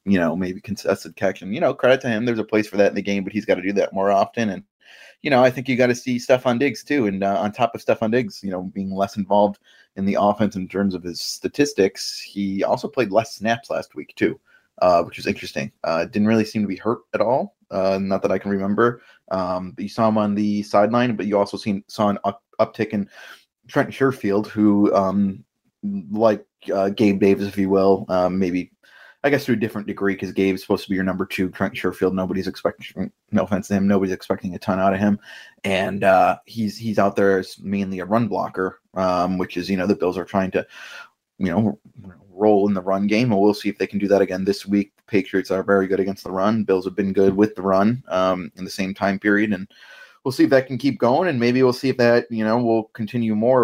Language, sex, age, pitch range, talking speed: English, male, 20-39, 95-110 Hz, 250 wpm